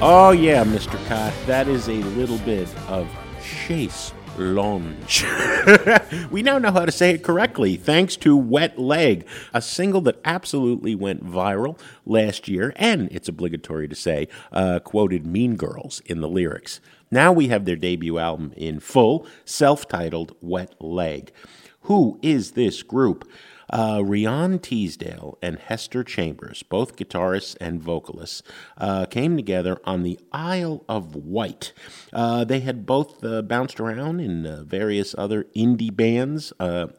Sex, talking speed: male, 145 wpm